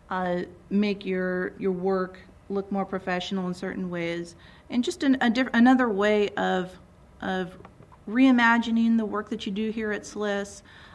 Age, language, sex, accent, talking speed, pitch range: 30-49, English, female, American, 160 wpm, 185-215 Hz